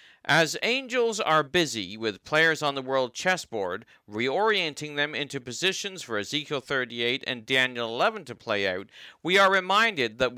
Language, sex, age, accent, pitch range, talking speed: English, male, 50-69, American, 125-185 Hz, 155 wpm